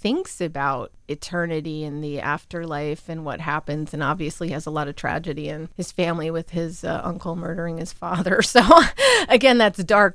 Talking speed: 175 wpm